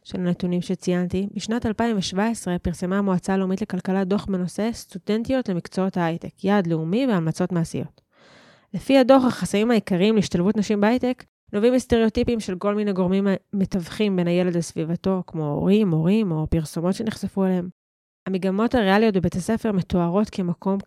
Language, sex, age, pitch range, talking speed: Hebrew, female, 20-39, 180-210 Hz, 140 wpm